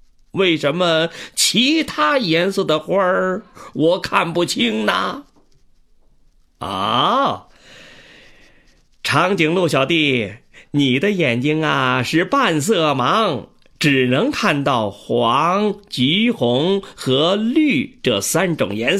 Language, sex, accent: Chinese, male, native